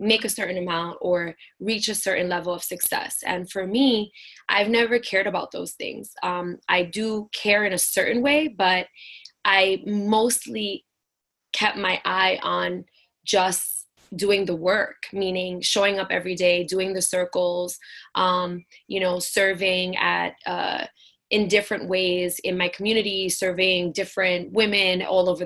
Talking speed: 150 wpm